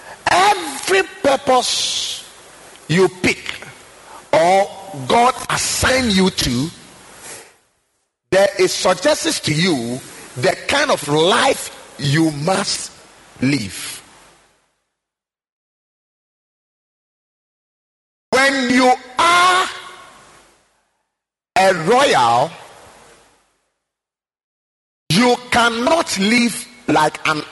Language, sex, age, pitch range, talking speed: English, male, 50-69, 180-265 Hz, 70 wpm